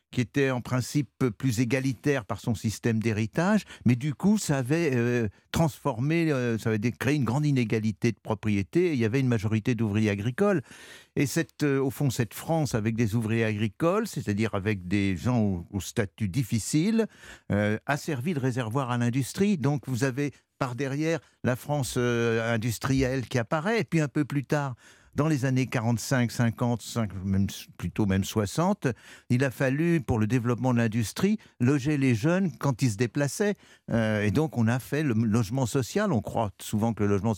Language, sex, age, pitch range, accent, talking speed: French, male, 60-79, 110-150 Hz, French, 190 wpm